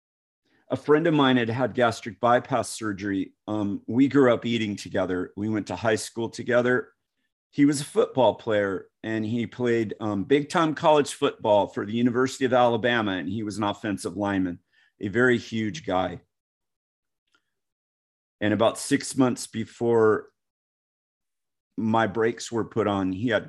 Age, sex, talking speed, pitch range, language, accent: 40-59, male, 155 wpm, 100-125 Hz, English, American